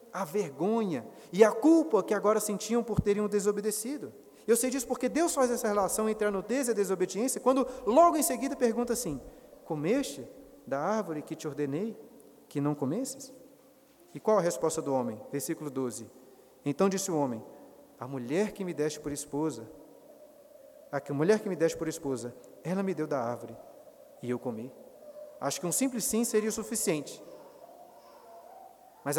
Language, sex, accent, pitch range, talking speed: Portuguese, male, Brazilian, 160-240 Hz, 170 wpm